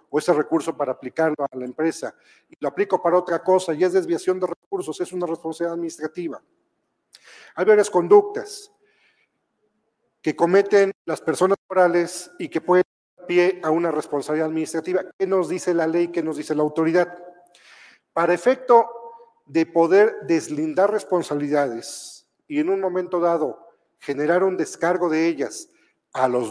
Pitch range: 155-195 Hz